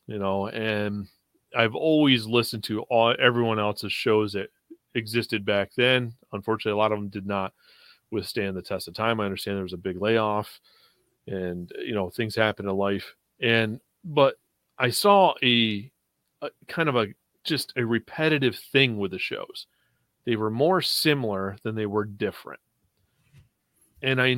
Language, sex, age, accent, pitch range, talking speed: English, male, 30-49, American, 105-125 Hz, 165 wpm